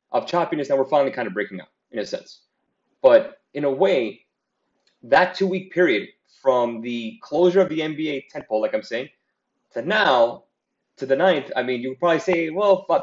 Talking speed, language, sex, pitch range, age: 195 wpm, English, male, 135-195 Hz, 30-49